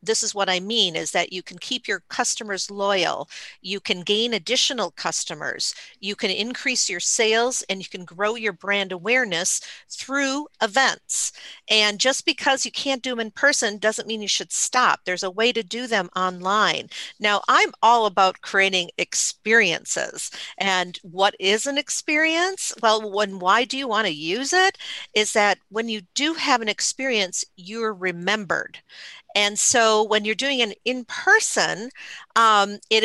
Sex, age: female, 50-69